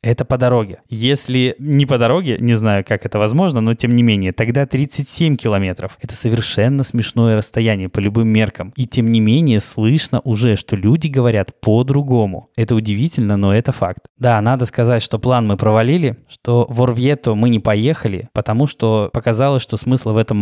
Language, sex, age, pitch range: Russian, male, 20-39, 105-125 Hz